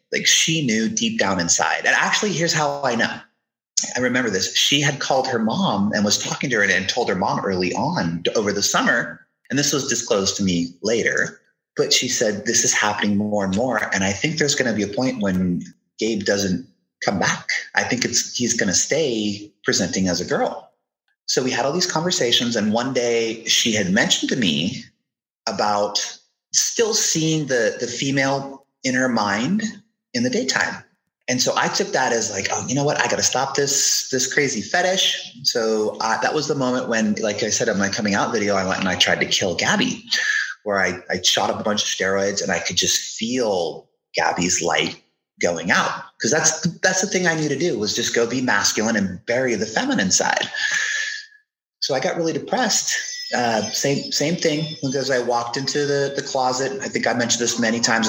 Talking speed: 210 wpm